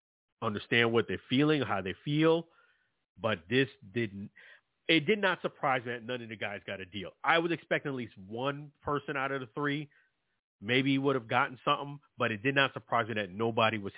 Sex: male